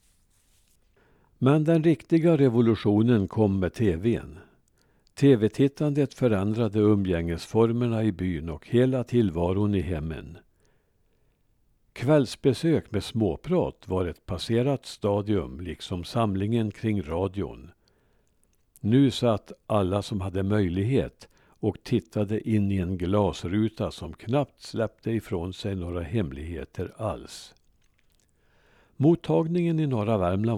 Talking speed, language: 100 wpm, Swedish